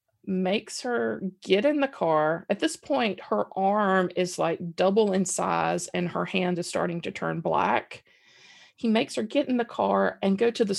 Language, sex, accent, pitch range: English, female, American, 175-210 Hz